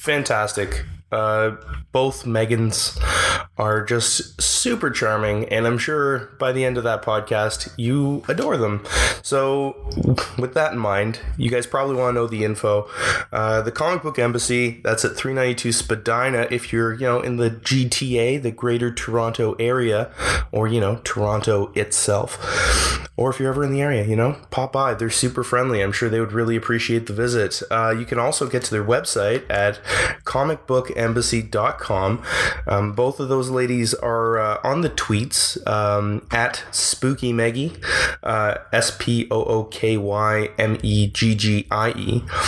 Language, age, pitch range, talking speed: English, 20-39, 110-125 Hz, 145 wpm